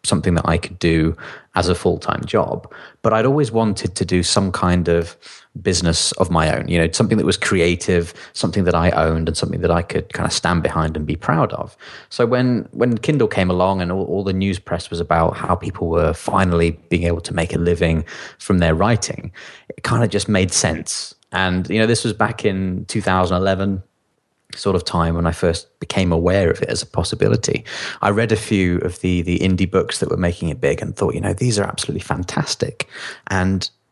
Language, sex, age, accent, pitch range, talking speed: English, male, 20-39, British, 90-105 Hz, 215 wpm